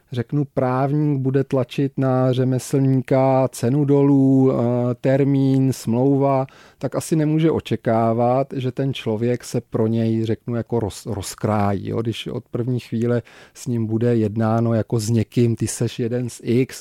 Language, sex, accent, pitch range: Czech, male, native, 120-135 Hz